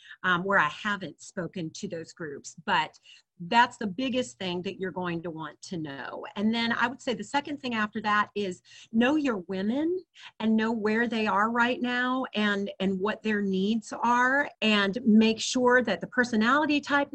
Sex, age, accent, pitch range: female, 40-59, American, 185-235 Hz